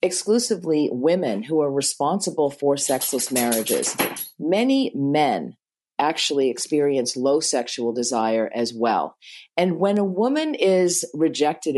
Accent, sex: American, female